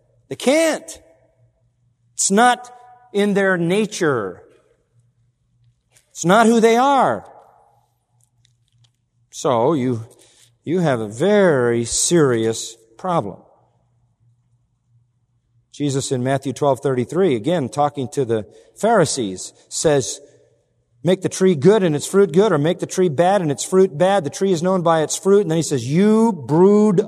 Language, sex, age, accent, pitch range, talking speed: English, male, 50-69, American, 120-185 Hz, 135 wpm